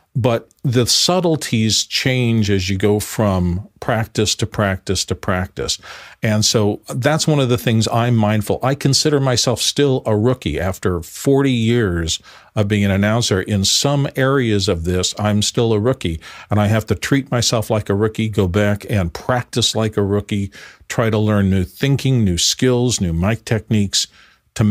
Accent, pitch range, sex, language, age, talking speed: American, 100-125 Hz, male, English, 50-69, 170 wpm